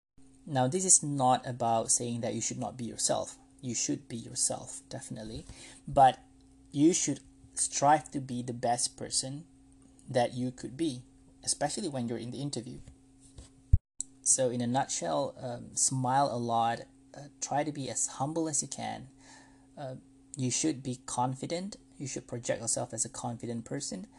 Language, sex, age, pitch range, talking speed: English, male, 20-39, 120-135 Hz, 165 wpm